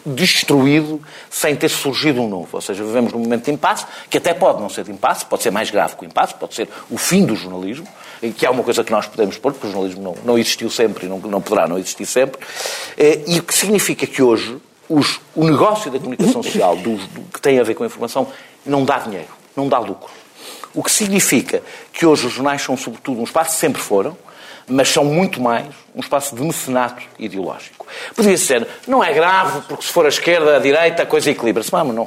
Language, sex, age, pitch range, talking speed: Portuguese, male, 50-69, 125-185 Hz, 225 wpm